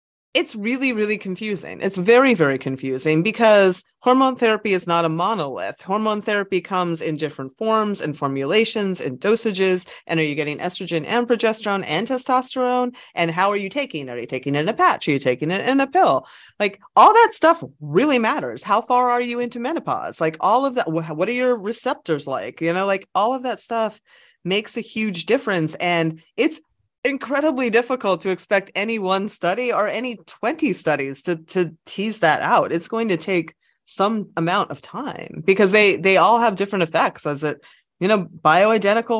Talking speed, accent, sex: 190 wpm, American, female